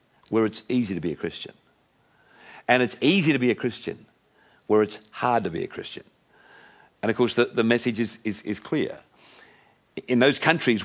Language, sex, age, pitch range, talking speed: English, male, 50-69, 110-150 Hz, 190 wpm